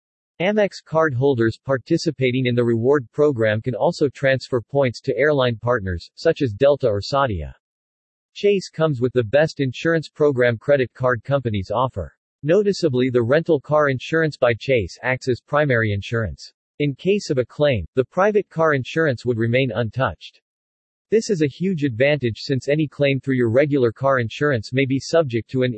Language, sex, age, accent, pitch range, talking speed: English, male, 40-59, American, 115-145 Hz, 165 wpm